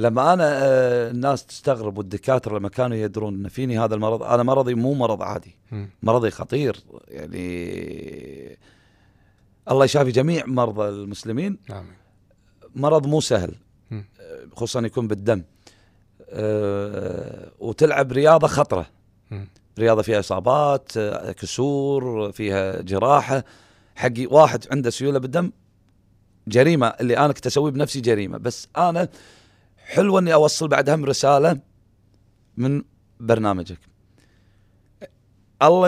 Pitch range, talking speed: 100-145 Hz, 105 wpm